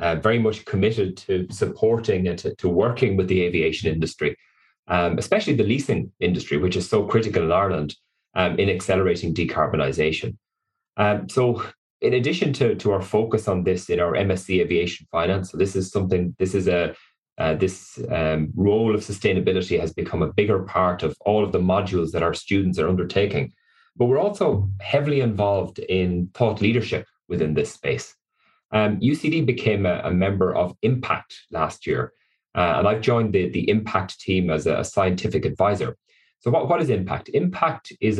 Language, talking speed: English, 175 wpm